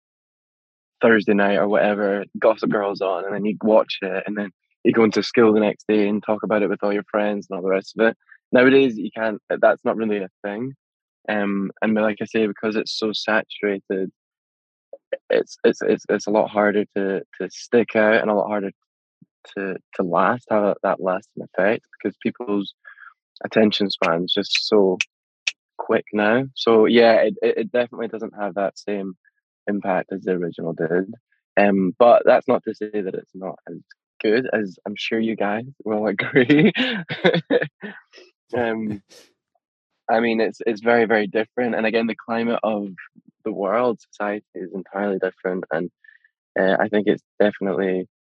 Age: 10-29